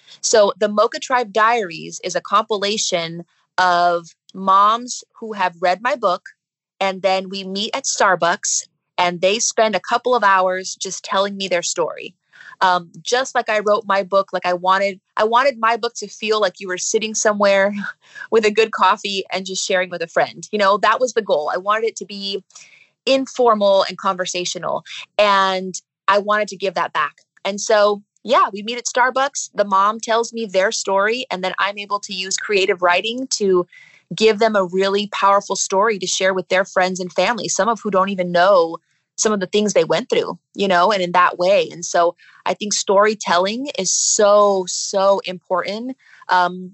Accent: American